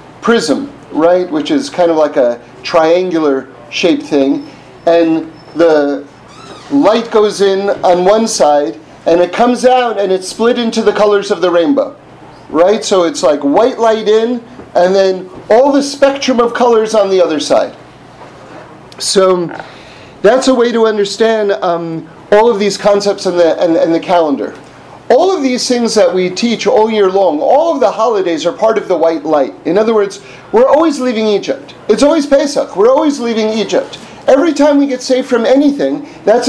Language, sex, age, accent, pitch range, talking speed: English, male, 40-59, American, 190-260 Hz, 180 wpm